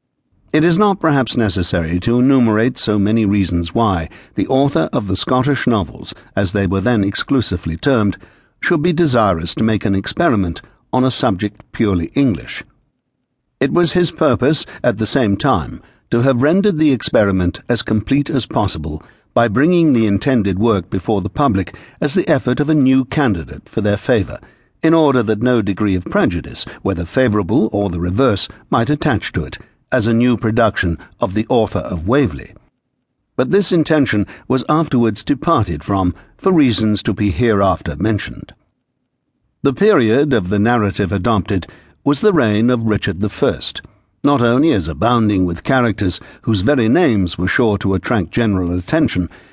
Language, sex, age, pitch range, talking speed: English, male, 60-79, 100-130 Hz, 165 wpm